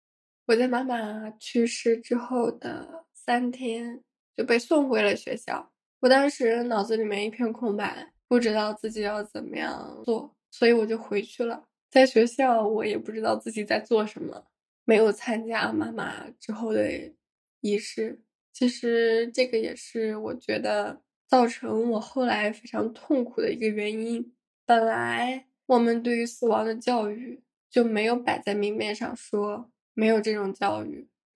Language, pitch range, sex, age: Chinese, 220-250 Hz, female, 10-29